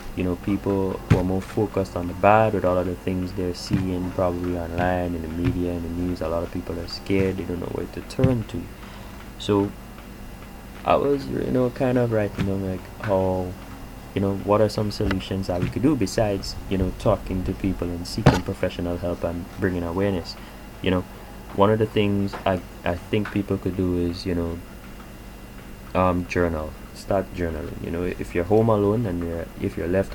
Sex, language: male, English